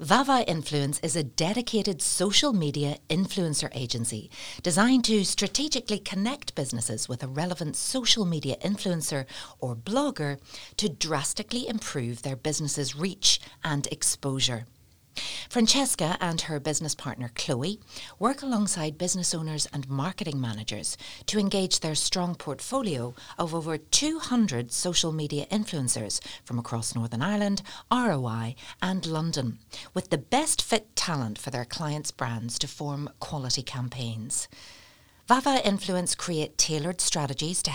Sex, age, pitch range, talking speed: female, 60-79, 130-190 Hz, 125 wpm